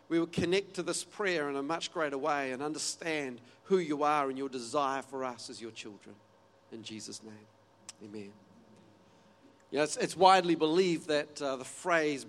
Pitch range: 135-175 Hz